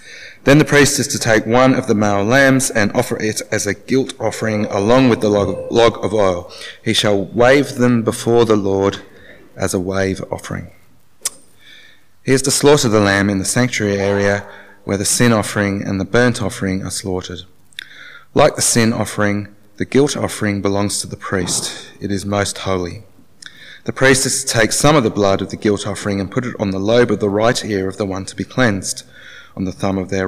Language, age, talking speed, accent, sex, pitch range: English, 30-49, 205 wpm, Australian, male, 100-115 Hz